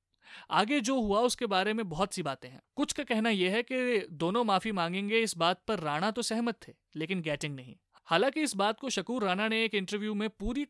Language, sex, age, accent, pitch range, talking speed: Hindi, male, 30-49, native, 165-215 Hz, 225 wpm